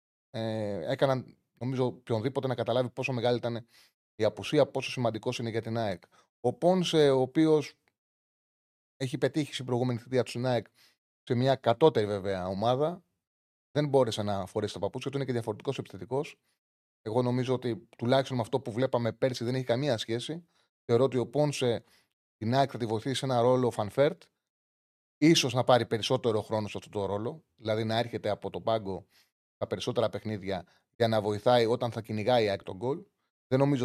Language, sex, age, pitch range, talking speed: Greek, male, 30-49, 110-140 Hz, 175 wpm